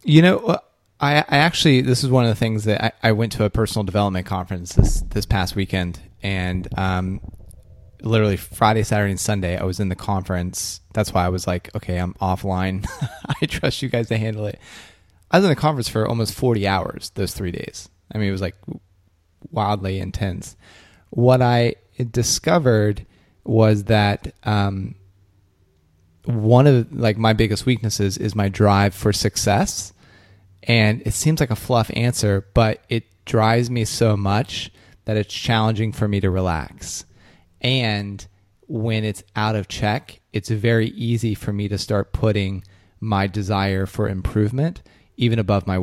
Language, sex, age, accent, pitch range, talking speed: English, male, 20-39, American, 95-115 Hz, 165 wpm